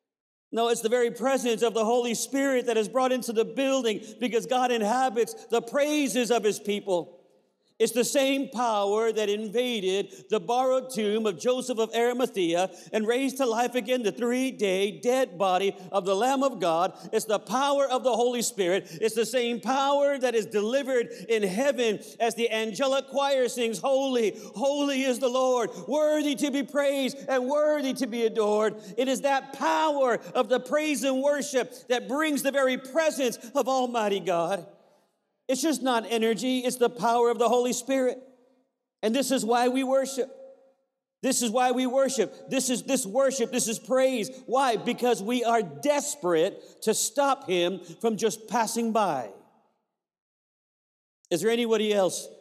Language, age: English, 50-69